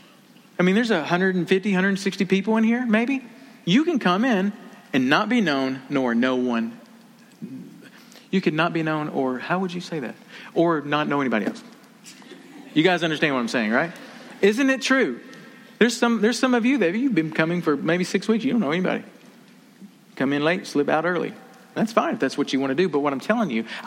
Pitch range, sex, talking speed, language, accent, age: 140-230 Hz, male, 215 wpm, English, American, 40-59